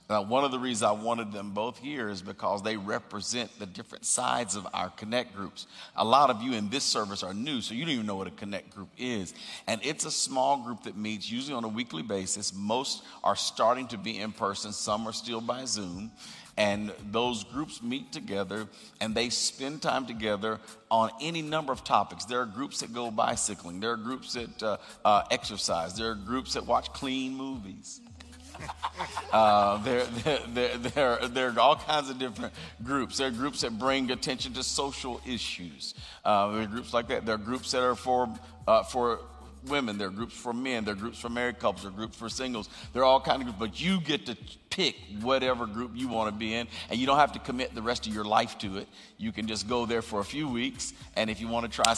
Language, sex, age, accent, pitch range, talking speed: English, male, 50-69, American, 105-125 Hz, 225 wpm